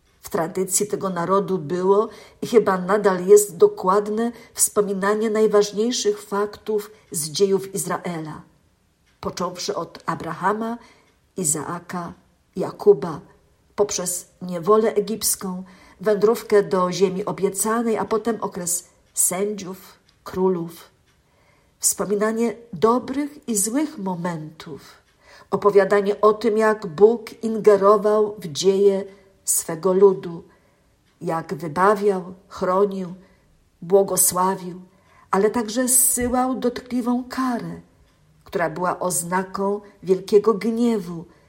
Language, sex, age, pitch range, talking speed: Polish, female, 50-69, 180-215 Hz, 90 wpm